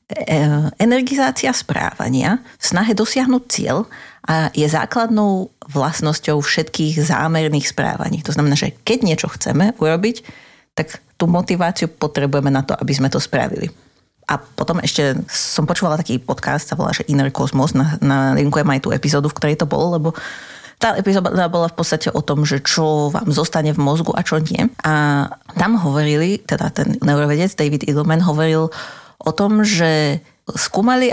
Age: 30-49